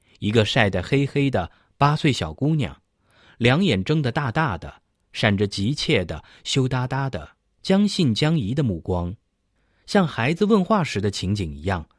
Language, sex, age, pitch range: Chinese, male, 30-49, 100-140 Hz